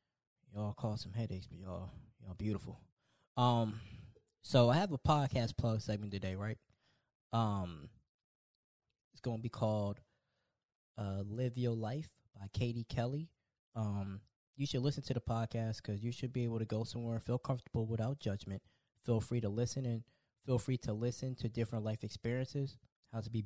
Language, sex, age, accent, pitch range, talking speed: English, male, 20-39, American, 105-125 Hz, 170 wpm